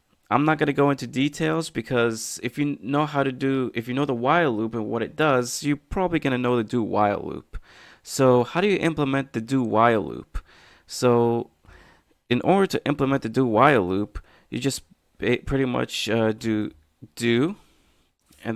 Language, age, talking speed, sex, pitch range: English, 20-39, 190 wpm, male, 105-130 Hz